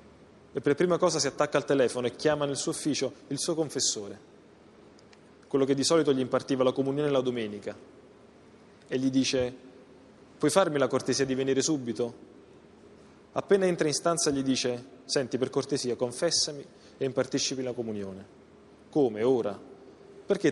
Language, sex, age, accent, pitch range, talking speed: Italian, male, 20-39, native, 125-150 Hz, 155 wpm